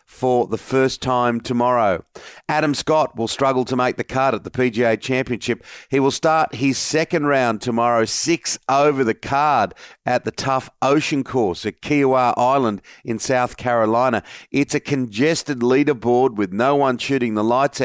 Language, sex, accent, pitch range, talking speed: English, male, Australian, 120-145 Hz, 165 wpm